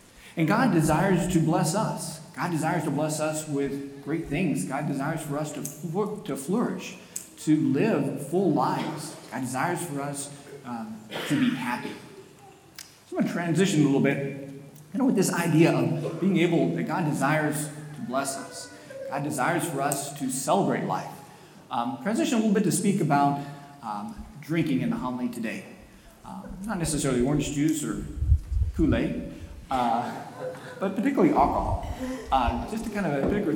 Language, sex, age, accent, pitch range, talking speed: English, male, 40-59, American, 140-175 Hz, 165 wpm